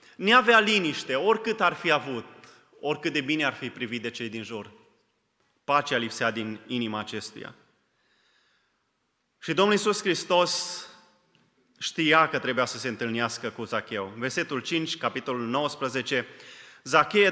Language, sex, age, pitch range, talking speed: Romanian, male, 30-49, 120-180 Hz, 135 wpm